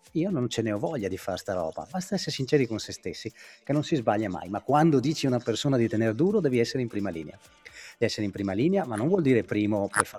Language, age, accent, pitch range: Italian, 30-49, native, 105-135 Hz